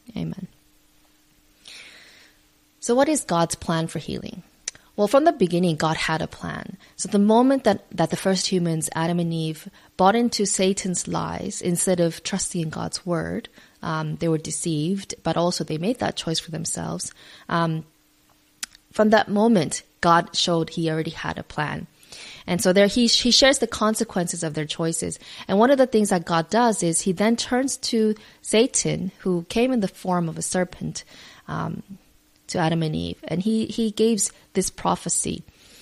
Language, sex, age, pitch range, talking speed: English, female, 20-39, 165-210 Hz, 175 wpm